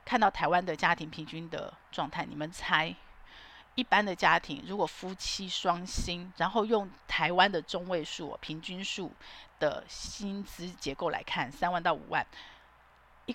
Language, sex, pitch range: Chinese, female, 165-235 Hz